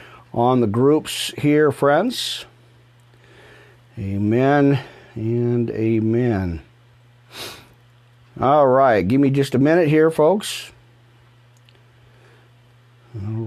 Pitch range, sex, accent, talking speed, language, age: 120-165 Hz, male, American, 80 wpm, English, 40-59